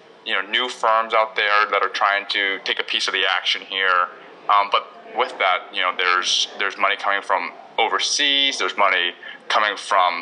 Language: English